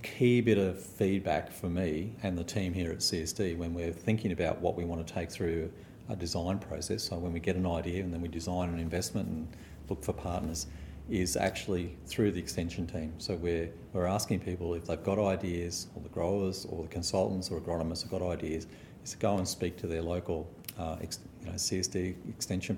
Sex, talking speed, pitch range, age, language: male, 205 wpm, 85-100 Hz, 40-59, English